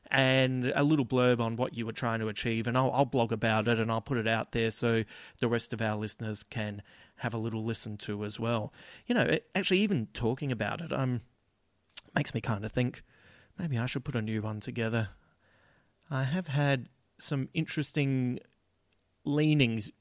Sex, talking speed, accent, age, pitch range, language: male, 195 wpm, Australian, 30-49, 115-145 Hz, English